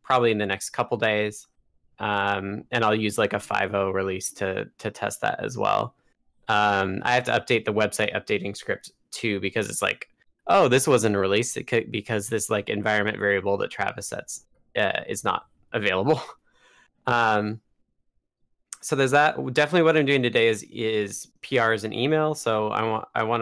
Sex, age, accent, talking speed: male, 20-39, American, 180 wpm